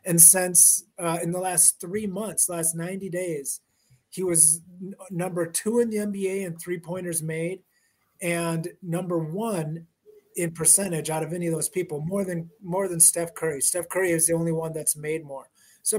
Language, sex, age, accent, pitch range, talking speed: English, male, 30-49, American, 165-195 Hz, 185 wpm